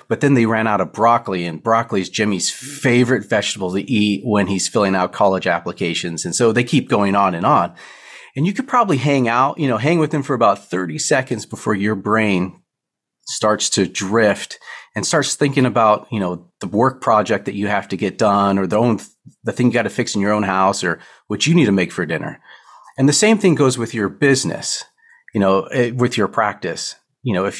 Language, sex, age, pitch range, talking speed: English, male, 40-59, 105-140 Hz, 220 wpm